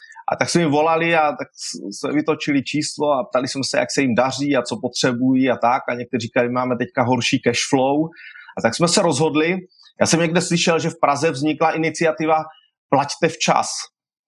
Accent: native